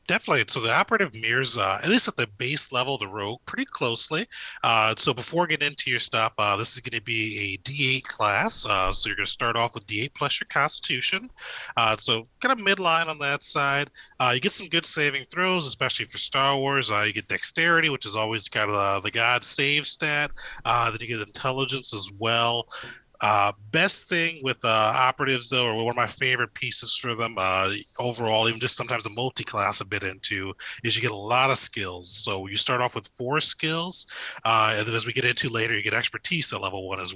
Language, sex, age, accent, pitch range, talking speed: English, male, 30-49, American, 105-135 Hz, 225 wpm